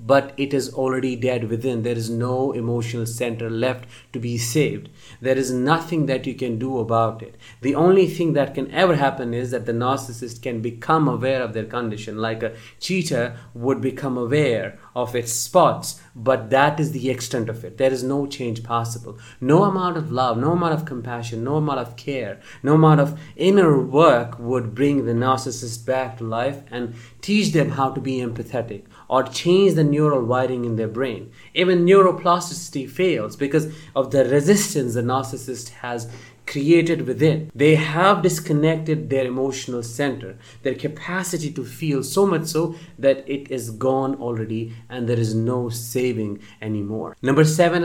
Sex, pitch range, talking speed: male, 120-150 Hz, 175 wpm